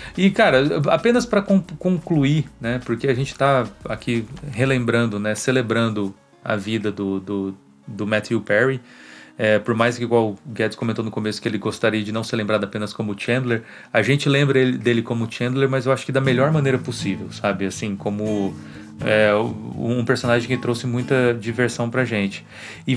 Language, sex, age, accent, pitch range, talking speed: Portuguese, male, 30-49, Brazilian, 105-135 Hz, 170 wpm